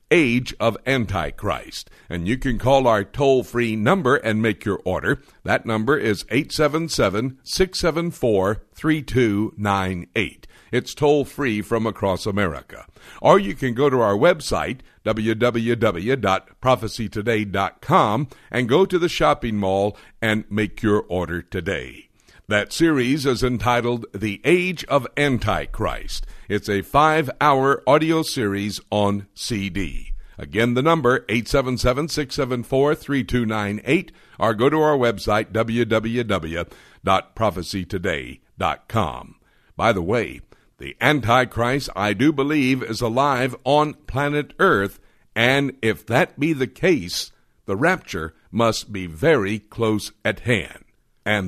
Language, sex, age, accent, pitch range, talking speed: English, male, 60-79, American, 105-135 Hz, 120 wpm